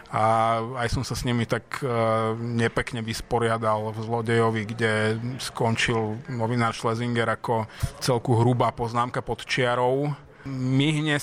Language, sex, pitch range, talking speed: Slovak, male, 115-130 Hz, 120 wpm